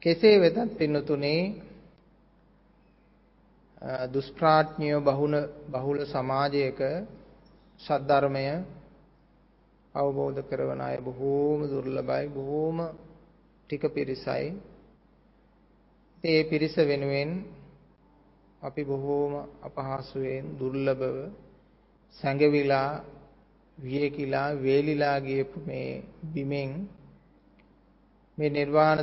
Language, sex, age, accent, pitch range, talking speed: English, male, 30-49, Indian, 135-160 Hz, 60 wpm